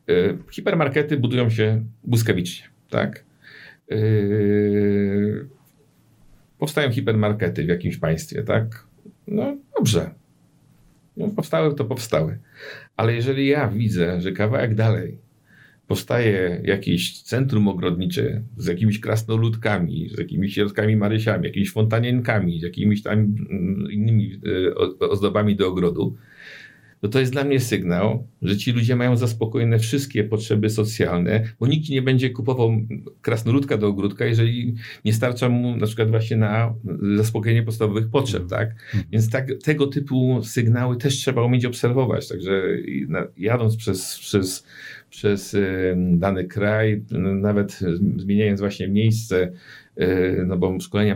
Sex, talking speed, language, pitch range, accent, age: male, 120 wpm, Polish, 100-120 Hz, native, 50-69